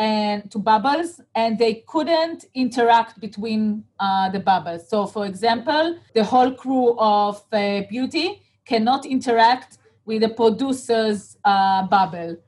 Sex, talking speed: female, 130 wpm